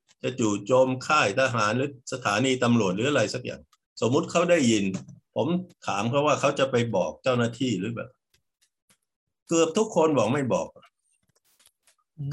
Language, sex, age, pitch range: Thai, male, 60-79, 110-155 Hz